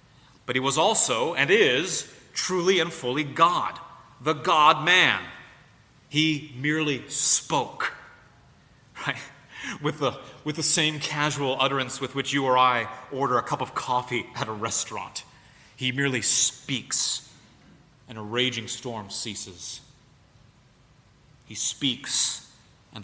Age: 30-49